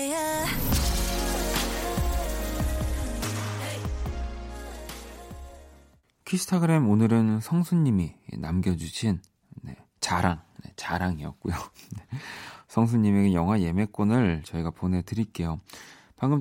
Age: 40-59